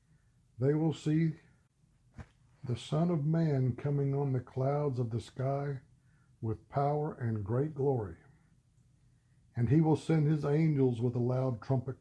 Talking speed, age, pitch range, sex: 145 wpm, 60-79, 125-150 Hz, male